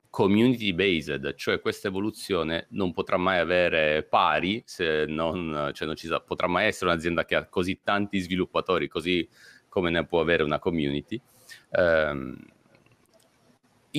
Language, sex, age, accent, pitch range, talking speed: Italian, male, 40-59, native, 80-110 Hz, 140 wpm